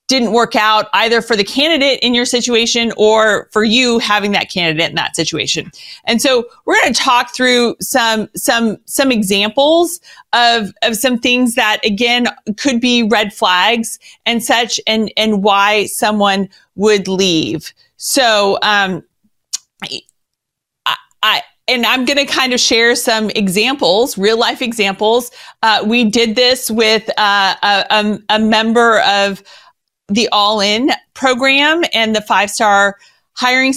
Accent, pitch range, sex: American, 205-245 Hz, female